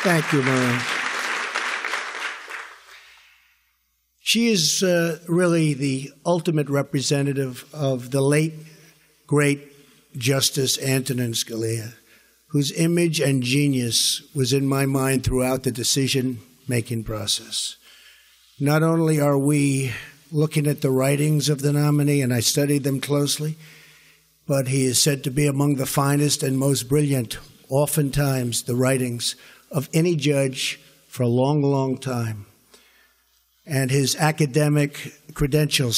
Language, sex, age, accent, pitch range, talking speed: English, male, 50-69, American, 130-150 Hz, 120 wpm